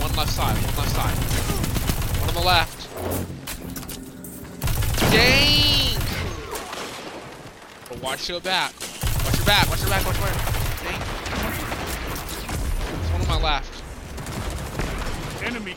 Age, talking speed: 20-39, 110 wpm